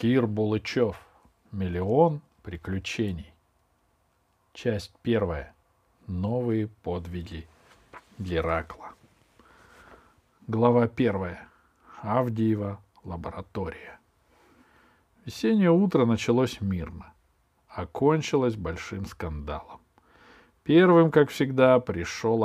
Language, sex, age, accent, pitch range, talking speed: Russian, male, 50-69, native, 90-125 Hz, 65 wpm